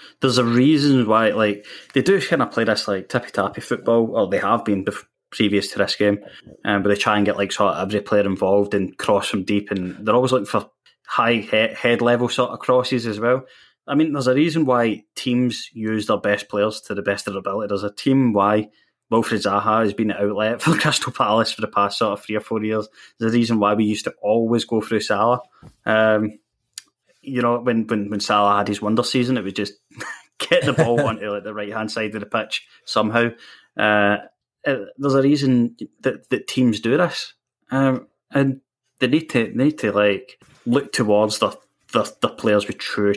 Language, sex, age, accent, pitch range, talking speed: English, male, 20-39, British, 105-125 Hz, 215 wpm